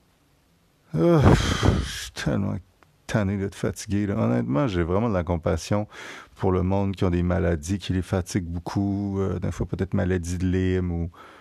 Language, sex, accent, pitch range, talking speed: French, male, French, 95-110 Hz, 175 wpm